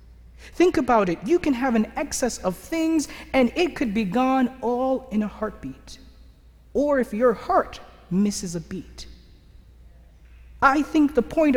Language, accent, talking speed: English, American, 155 wpm